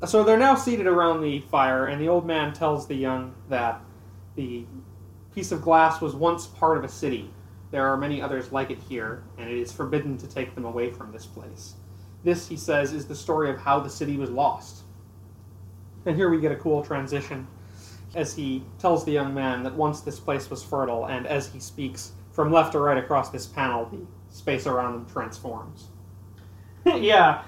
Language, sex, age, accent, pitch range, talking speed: English, male, 30-49, American, 115-190 Hz, 200 wpm